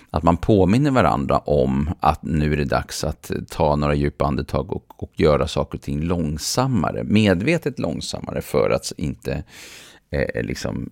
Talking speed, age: 160 wpm, 40-59